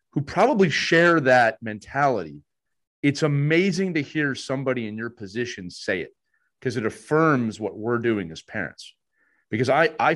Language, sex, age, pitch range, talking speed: English, male, 30-49, 120-165 Hz, 155 wpm